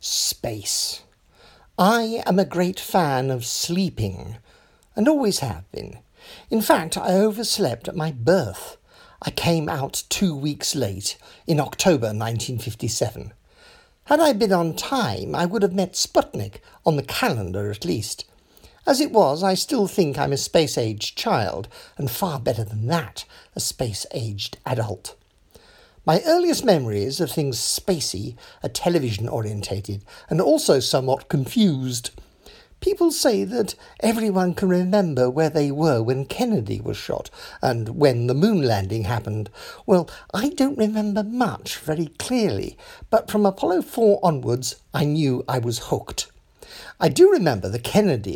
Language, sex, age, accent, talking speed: English, male, 50-69, British, 140 wpm